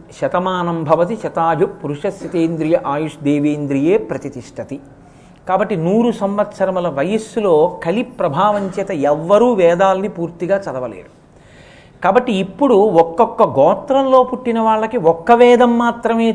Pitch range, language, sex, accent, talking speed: 180-240 Hz, Telugu, male, native, 100 wpm